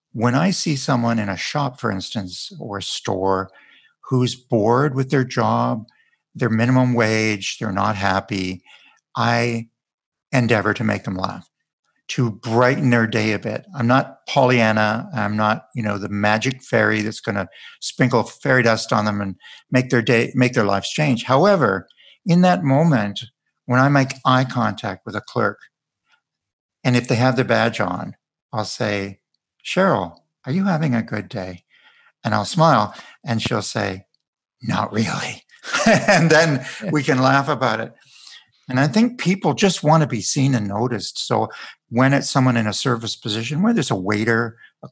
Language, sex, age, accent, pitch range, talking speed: English, male, 50-69, American, 110-135 Hz, 170 wpm